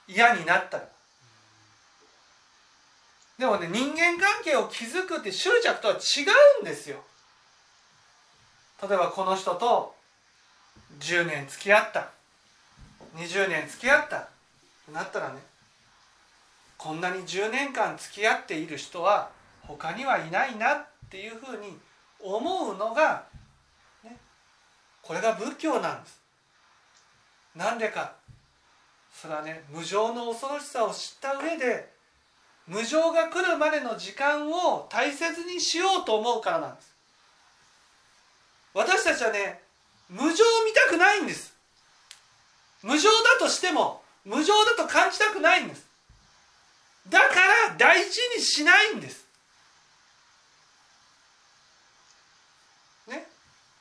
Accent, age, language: native, 40-59, Japanese